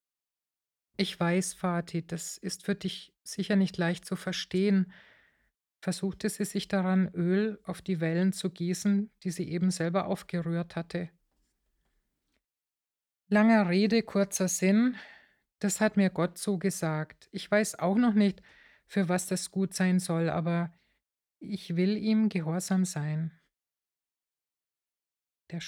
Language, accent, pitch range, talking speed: German, German, 170-200 Hz, 130 wpm